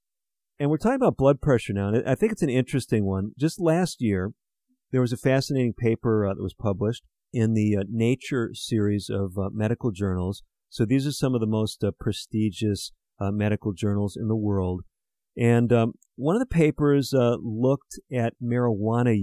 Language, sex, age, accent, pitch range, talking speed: English, male, 50-69, American, 105-130 Hz, 185 wpm